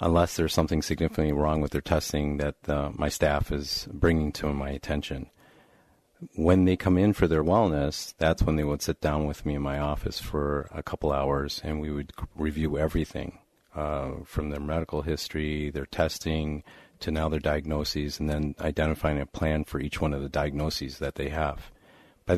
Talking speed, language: 190 wpm, English